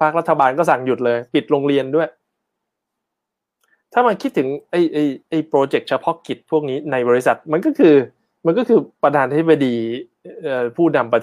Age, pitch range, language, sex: 20-39, 135-180 Hz, Thai, male